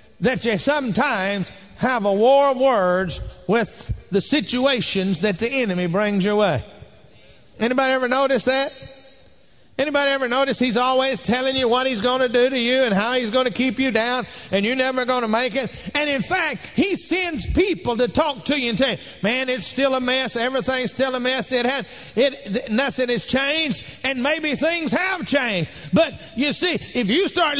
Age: 50-69